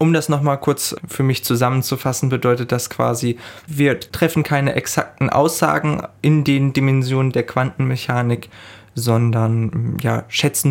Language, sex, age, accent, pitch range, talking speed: German, male, 20-39, German, 125-145 Hz, 125 wpm